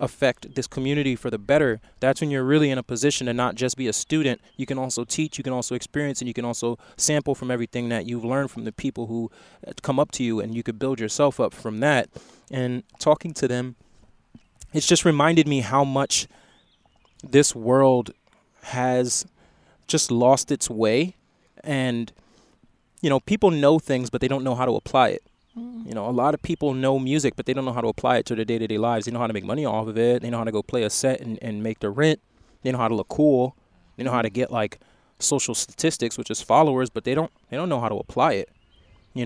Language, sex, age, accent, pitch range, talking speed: English, male, 20-39, American, 120-140 Hz, 235 wpm